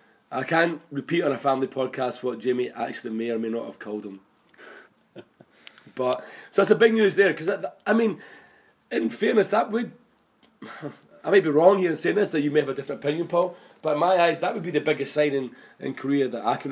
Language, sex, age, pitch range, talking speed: English, male, 30-49, 135-170 Hz, 225 wpm